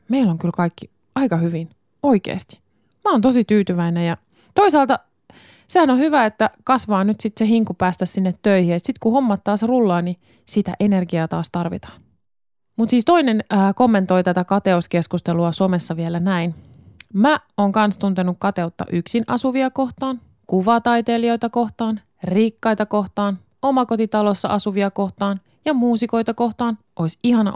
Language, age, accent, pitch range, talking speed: Finnish, 20-39, native, 185-240 Hz, 140 wpm